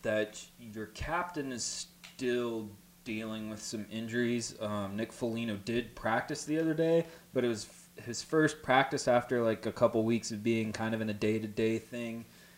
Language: English